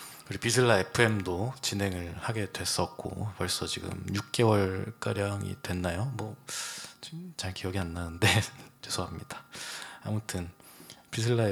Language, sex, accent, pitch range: Korean, male, native, 95-115 Hz